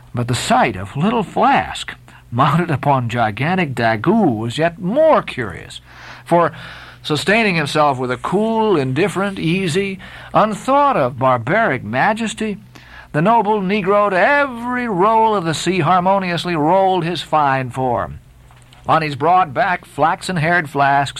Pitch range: 130-195 Hz